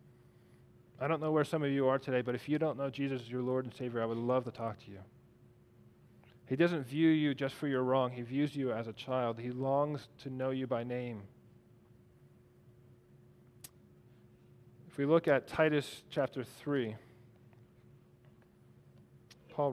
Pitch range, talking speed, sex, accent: 120-150 Hz, 170 wpm, male, American